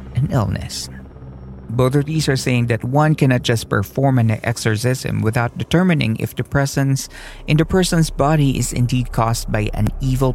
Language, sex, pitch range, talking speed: Filipino, male, 100-130 Hz, 170 wpm